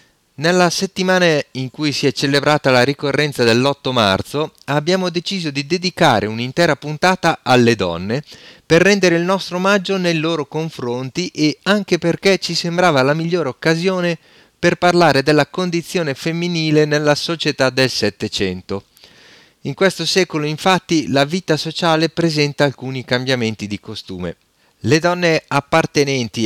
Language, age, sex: Italian, 30-49, male